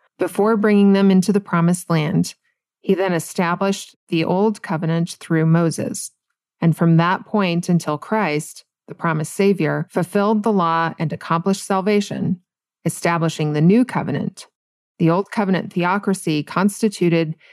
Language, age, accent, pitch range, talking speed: English, 30-49, American, 165-195 Hz, 135 wpm